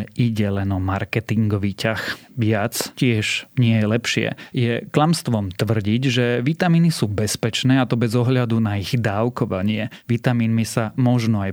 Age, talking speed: 30-49, 145 wpm